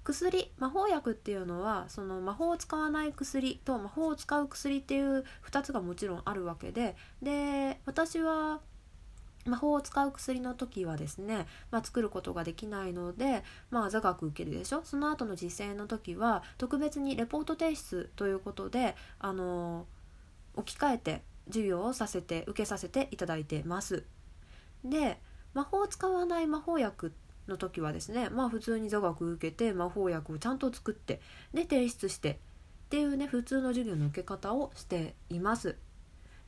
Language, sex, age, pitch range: Japanese, female, 20-39, 175-270 Hz